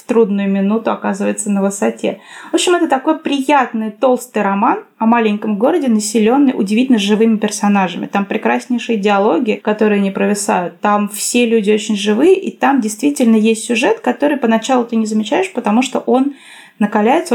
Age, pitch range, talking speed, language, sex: 20-39, 200-240 Hz, 150 wpm, Russian, female